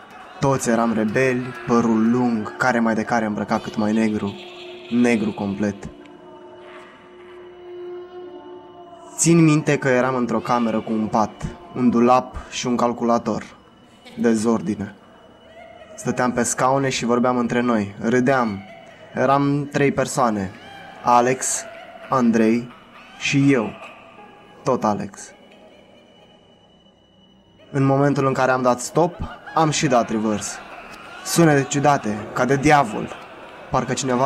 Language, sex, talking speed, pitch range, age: Romanian, male, 115 wpm, 115-140 Hz, 20-39